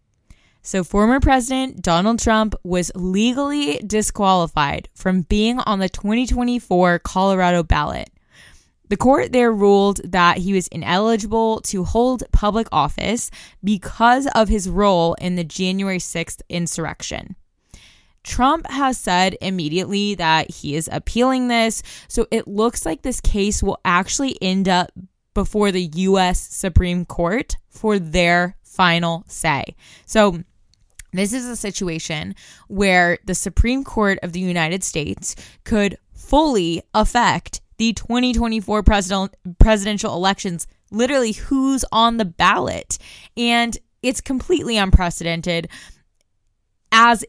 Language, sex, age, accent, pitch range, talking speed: English, female, 10-29, American, 180-225 Hz, 120 wpm